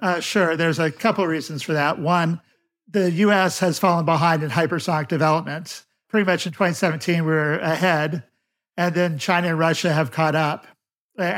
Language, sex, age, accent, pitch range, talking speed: English, male, 50-69, American, 155-180 Hz, 180 wpm